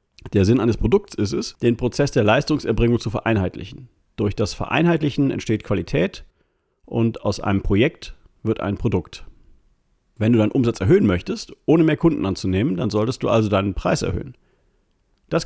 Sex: male